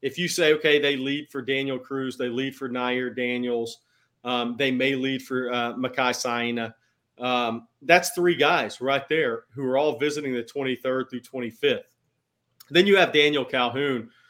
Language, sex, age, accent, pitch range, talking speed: English, male, 40-59, American, 125-145 Hz, 170 wpm